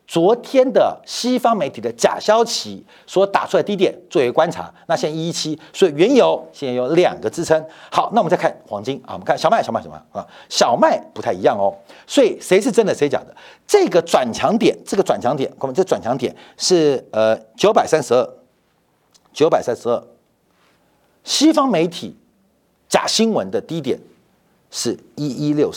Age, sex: 50-69, male